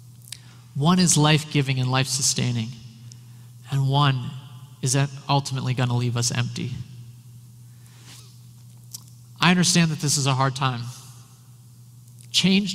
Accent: American